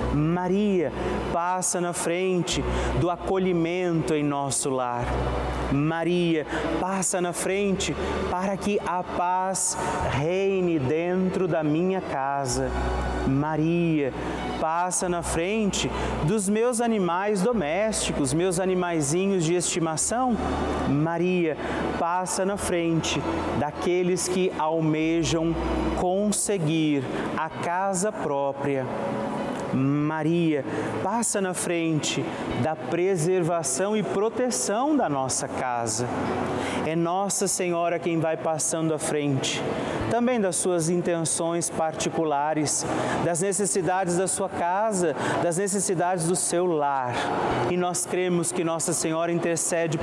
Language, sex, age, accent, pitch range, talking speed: Portuguese, male, 30-49, Brazilian, 155-185 Hz, 105 wpm